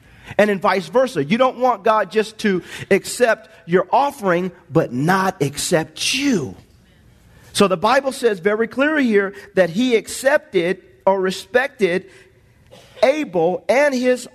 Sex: male